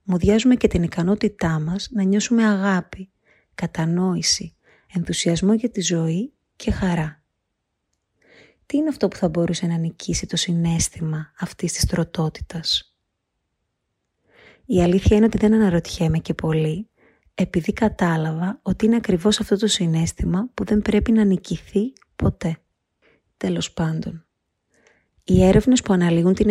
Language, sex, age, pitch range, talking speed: Greek, female, 30-49, 165-210 Hz, 130 wpm